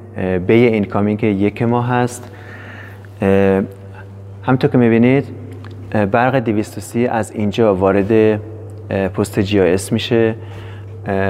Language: Persian